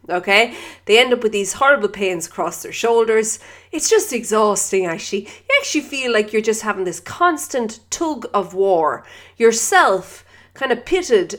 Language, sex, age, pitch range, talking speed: English, female, 30-49, 180-280 Hz, 165 wpm